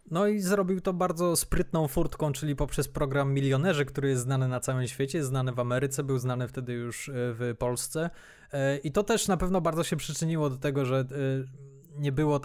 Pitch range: 130-185 Hz